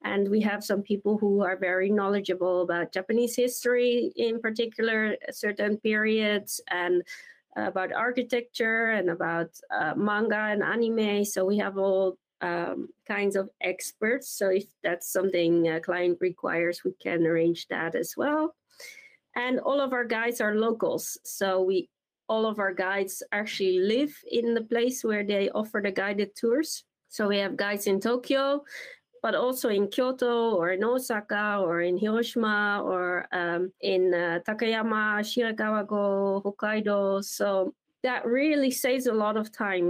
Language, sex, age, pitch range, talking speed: French, female, 20-39, 195-245 Hz, 150 wpm